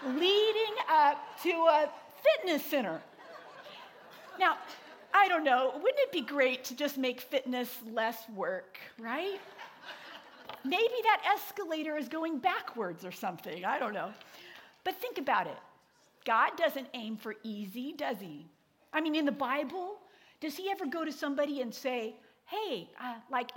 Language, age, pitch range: English, 50-69, 235-315 Hz